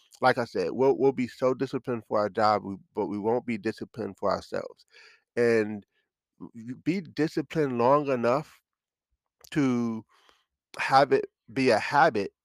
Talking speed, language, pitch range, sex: 145 wpm, English, 110-130 Hz, male